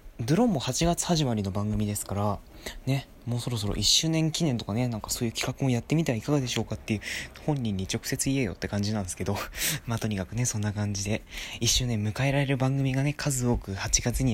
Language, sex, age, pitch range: Japanese, male, 20-39, 105-135 Hz